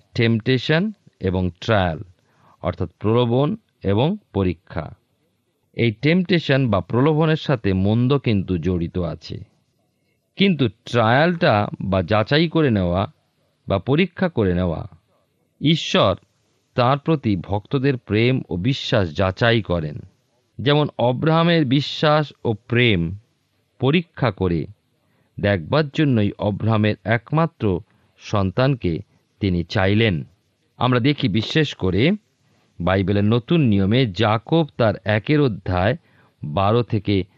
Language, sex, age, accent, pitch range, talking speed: Bengali, male, 50-69, native, 100-145 Hz, 100 wpm